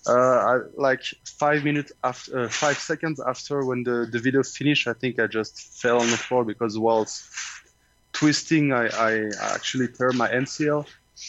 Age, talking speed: 20-39, 170 wpm